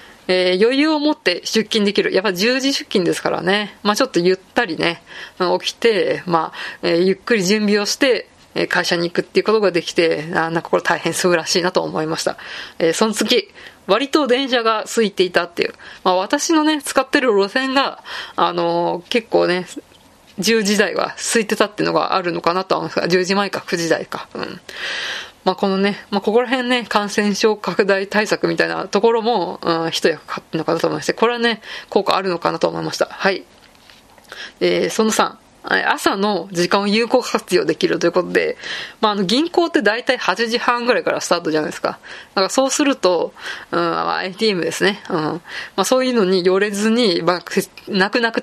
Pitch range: 180-245 Hz